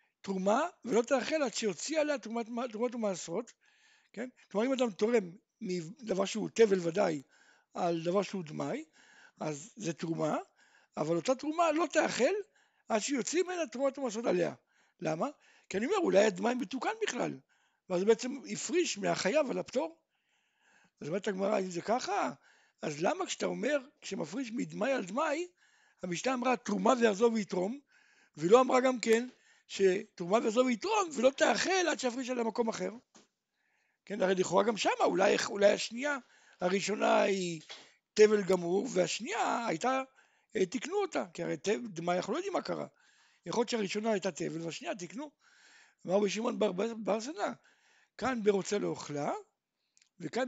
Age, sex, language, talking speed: 60-79, male, Hebrew, 150 wpm